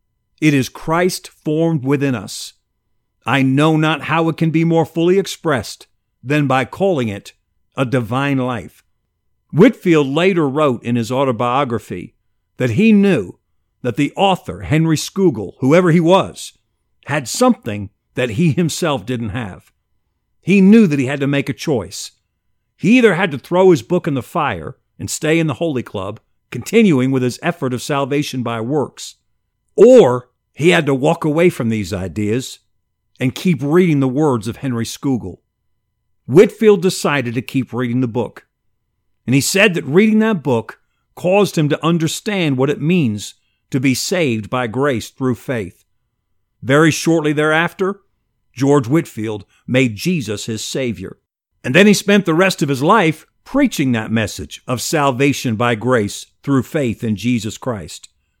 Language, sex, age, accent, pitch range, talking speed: English, male, 50-69, American, 115-165 Hz, 160 wpm